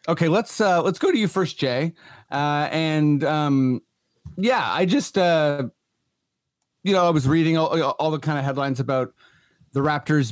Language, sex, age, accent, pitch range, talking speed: English, male, 30-49, American, 120-150 Hz, 175 wpm